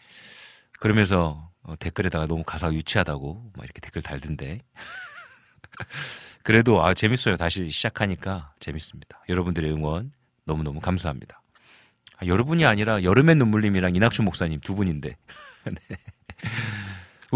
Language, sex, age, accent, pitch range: Korean, male, 40-59, native, 80-125 Hz